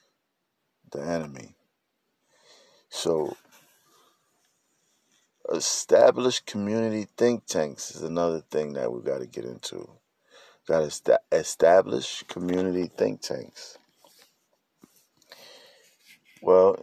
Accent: American